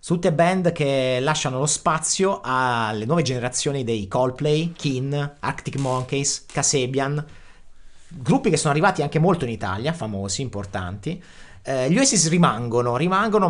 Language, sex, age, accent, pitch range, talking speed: Italian, male, 30-49, native, 125-170 Hz, 135 wpm